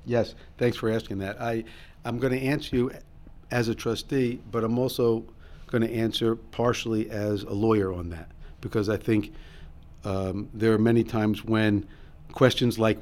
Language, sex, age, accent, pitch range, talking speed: English, male, 50-69, American, 80-115 Hz, 165 wpm